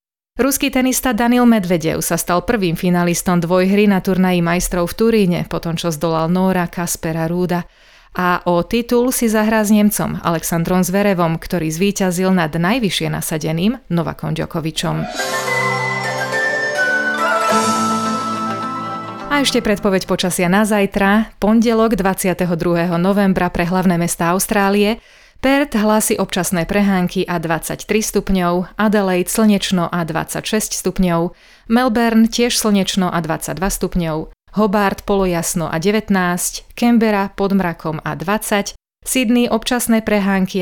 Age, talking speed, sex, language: 30-49, 115 wpm, female, Slovak